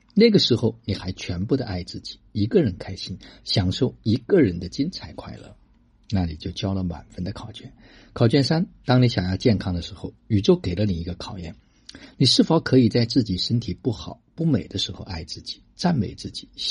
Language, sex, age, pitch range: Chinese, male, 50-69, 90-120 Hz